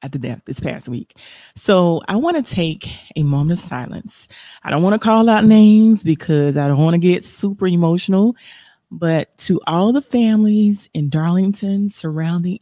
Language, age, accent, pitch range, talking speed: English, 30-49, American, 140-175 Hz, 180 wpm